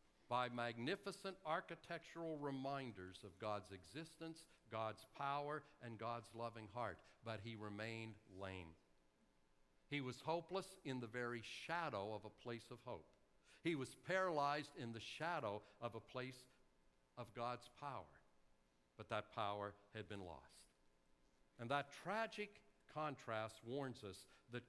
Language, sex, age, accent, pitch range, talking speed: English, male, 60-79, American, 105-160 Hz, 130 wpm